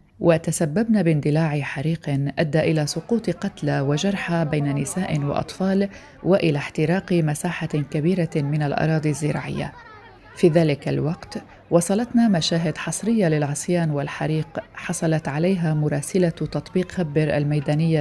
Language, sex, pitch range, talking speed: Arabic, female, 150-185 Hz, 105 wpm